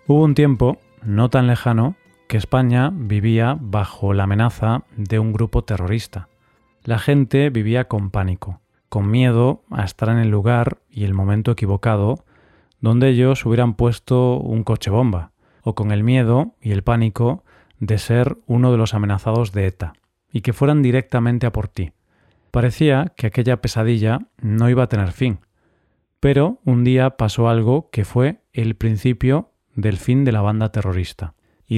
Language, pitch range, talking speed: Spanish, 105-125 Hz, 160 wpm